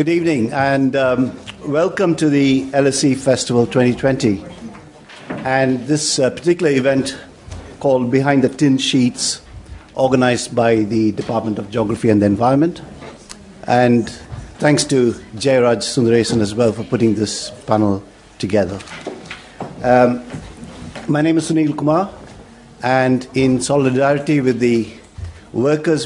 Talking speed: 125 wpm